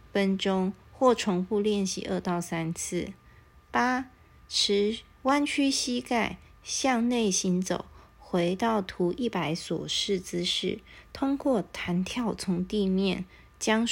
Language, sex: Chinese, female